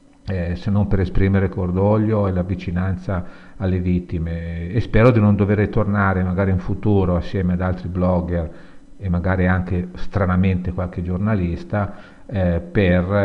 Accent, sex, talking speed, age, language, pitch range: native, male, 135 wpm, 50-69, Italian, 90-100 Hz